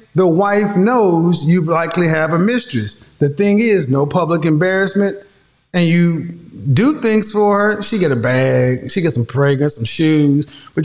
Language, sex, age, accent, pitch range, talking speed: English, male, 30-49, American, 140-205 Hz, 170 wpm